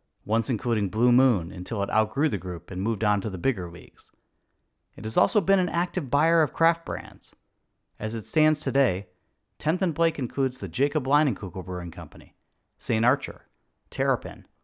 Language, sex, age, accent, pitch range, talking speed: English, male, 40-59, American, 100-145 Hz, 170 wpm